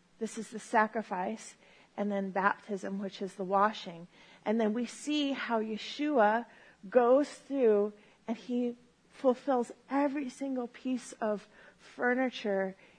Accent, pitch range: American, 210-245 Hz